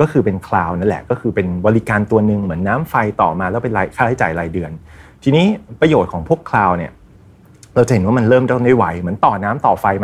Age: 30-49